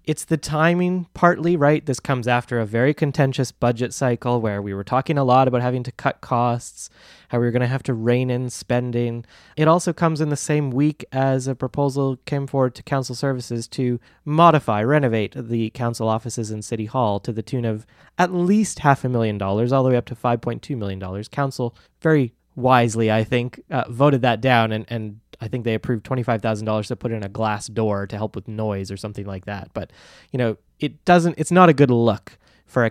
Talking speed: 215 wpm